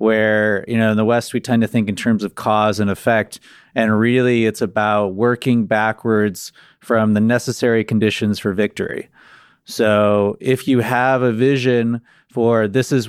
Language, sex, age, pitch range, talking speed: English, male, 30-49, 110-125 Hz, 170 wpm